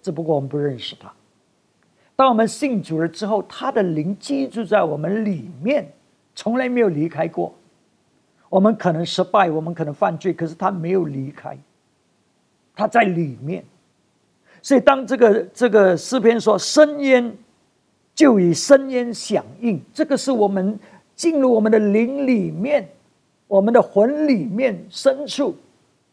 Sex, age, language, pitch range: male, 50-69, English, 185-265 Hz